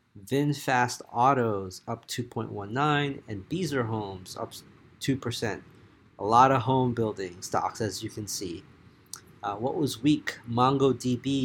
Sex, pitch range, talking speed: male, 105-125 Hz, 125 wpm